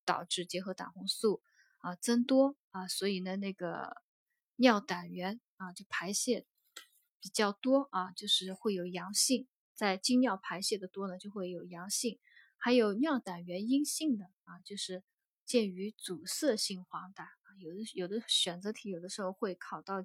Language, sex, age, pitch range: Chinese, female, 20-39, 185-235 Hz